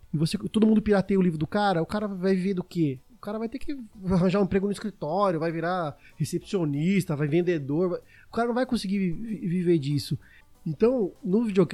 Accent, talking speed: Brazilian, 200 wpm